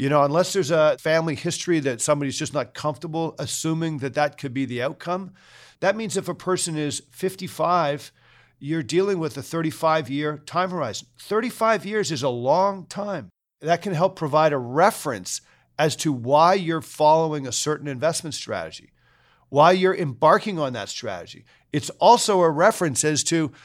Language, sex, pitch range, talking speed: English, male, 145-185 Hz, 165 wpm